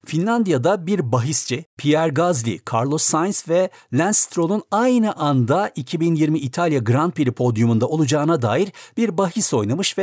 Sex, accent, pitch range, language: male, native, 115-165 Hz, Turkish